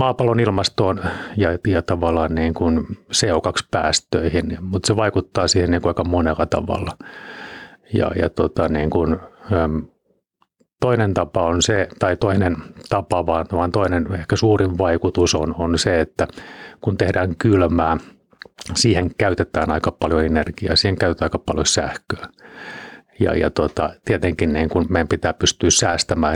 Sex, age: male, 30-49